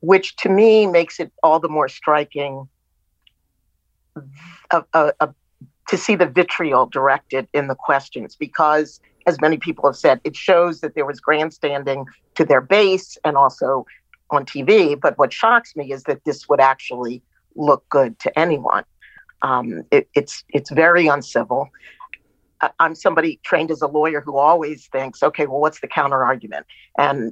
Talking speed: 165 wpm